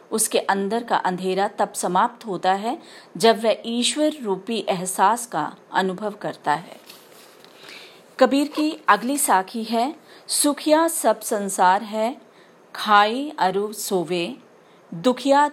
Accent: native